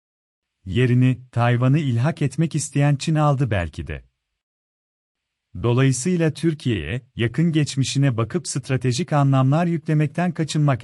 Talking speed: 100 wpm